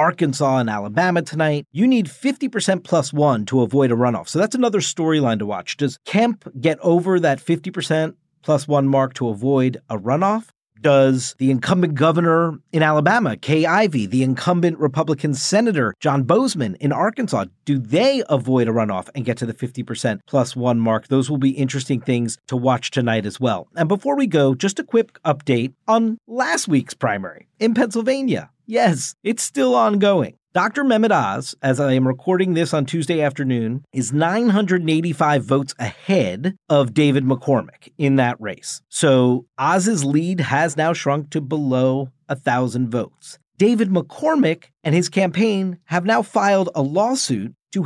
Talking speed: 165 wpm